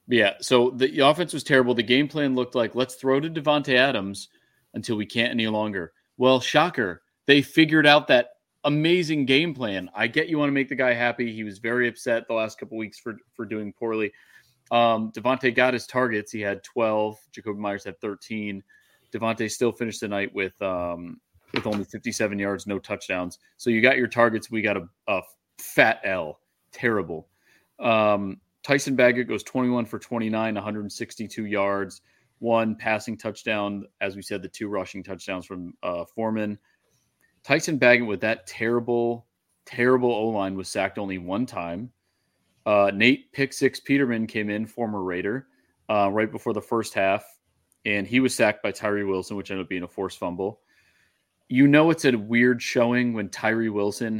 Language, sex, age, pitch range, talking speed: English, male, 30-49, 100-125 Hz, 180 wpm